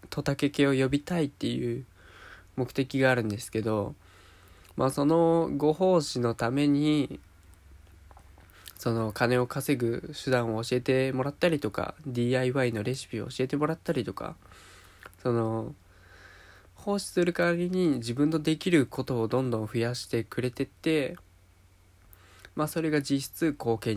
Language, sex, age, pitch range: Japanese, male, 20-39, 100-150 Hz